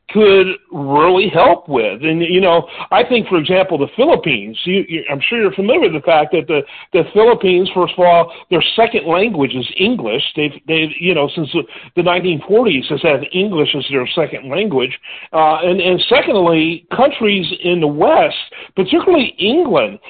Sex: male